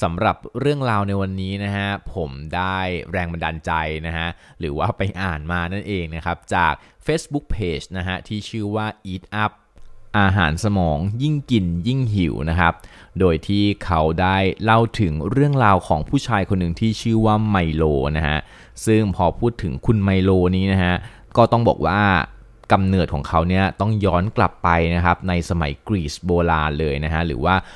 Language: Thai